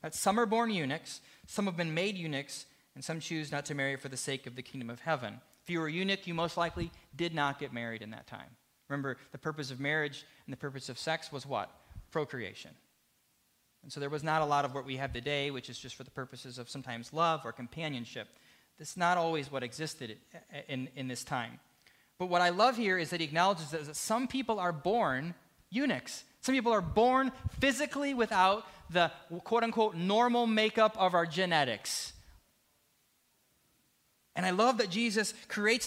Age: 30-49